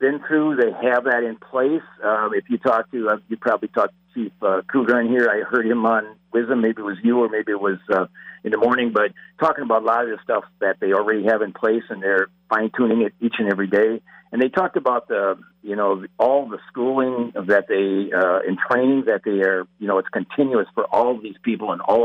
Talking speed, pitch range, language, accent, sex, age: 250 wpm, 100-130 Hz, English, American, male, 50-69